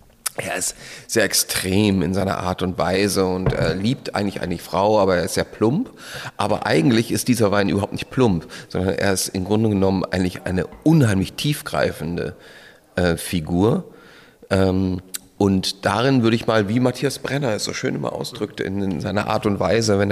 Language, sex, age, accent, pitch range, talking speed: German, male, 40-59, German, 90-105 Hz, 180 wpm